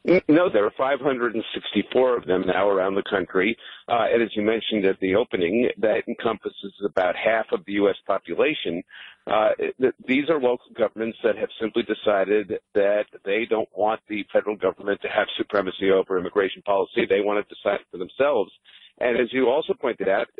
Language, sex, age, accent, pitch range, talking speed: English, male, 50-69, American, 110-145 Hz, 180 wpm